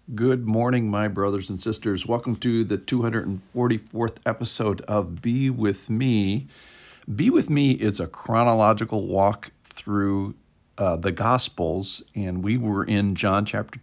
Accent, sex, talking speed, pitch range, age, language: American, male, 140 wpm, 95-125 Hz, 50-69, English